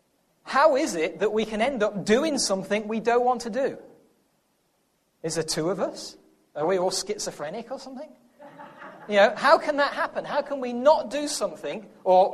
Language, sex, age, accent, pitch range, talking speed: English, male, 40-59, British, 180-235 Hz, 190 wpm